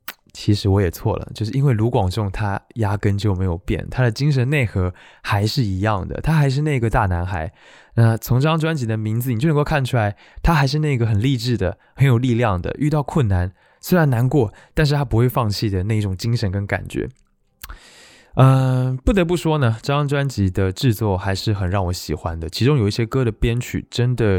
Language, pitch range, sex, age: Chinese, 100-130 Hz, male, 20-39